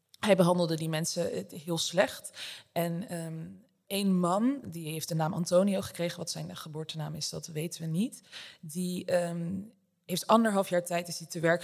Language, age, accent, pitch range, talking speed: Dutch, 20-39, Dutch, 160-180 Hz, 155 wpm